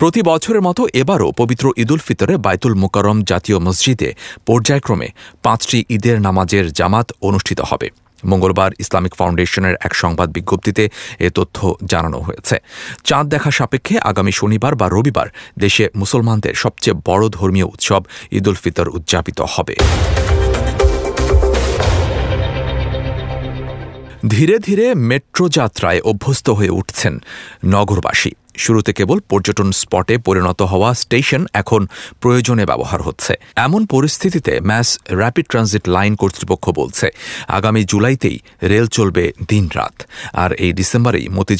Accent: Indian